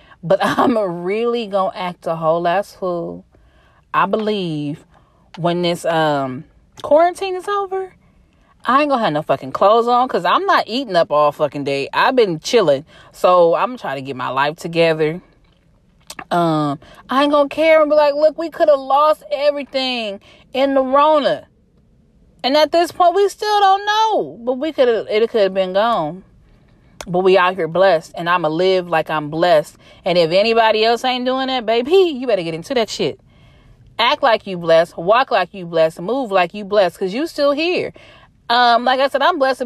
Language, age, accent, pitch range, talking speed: English, 30-49, American, 170-275 Hz, 190 wpm